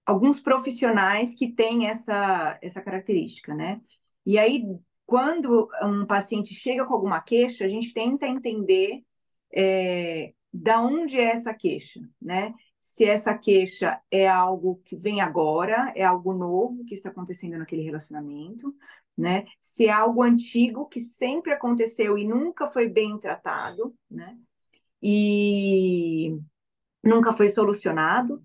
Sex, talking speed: female, 130 wpm